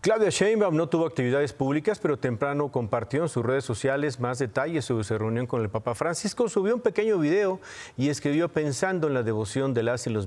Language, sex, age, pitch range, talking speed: Spanish, male, 40-59, 120-150 Hz, 210 wpm